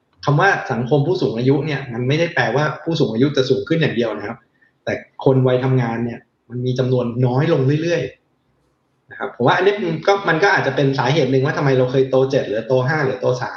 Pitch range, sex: 125-145 Hz, male